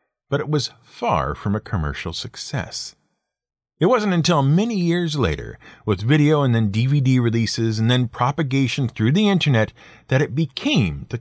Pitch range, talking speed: 100-150 Hz, 160 wpm